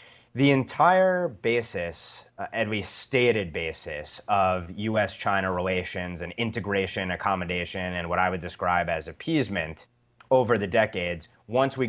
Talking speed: 125 wpm